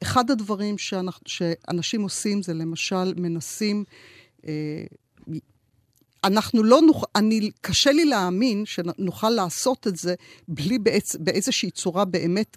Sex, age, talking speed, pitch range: female, 50-69, 105 wpm, 165-215 Hz